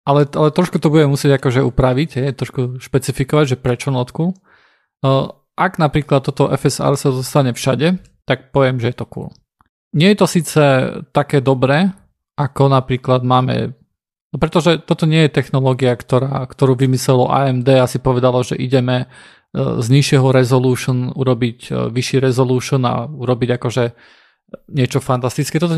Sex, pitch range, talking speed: male, 125-145 Hz, 145 wpm